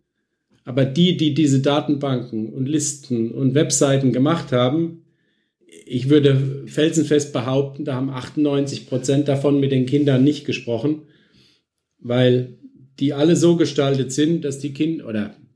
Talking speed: 130 wpm